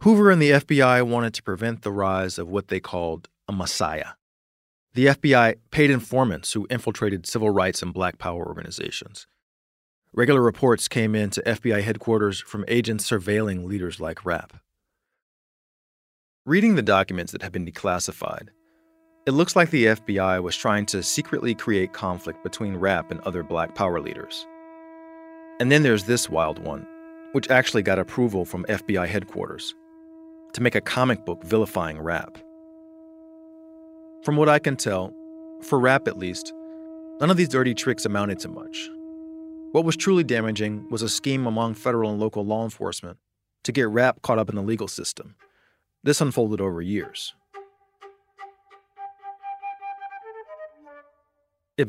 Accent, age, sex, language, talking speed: American, 40-59, male, English, 150 wpm